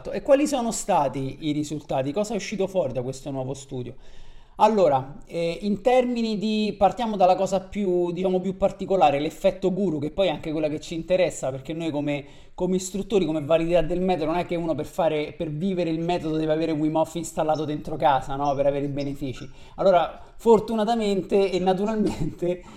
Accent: native